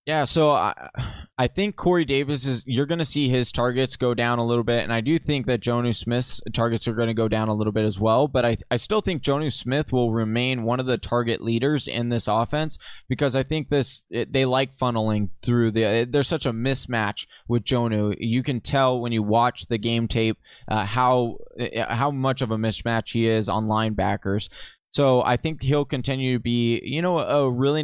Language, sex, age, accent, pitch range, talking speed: English, male, 20-39, American, 115-140 Hz, 215 wpm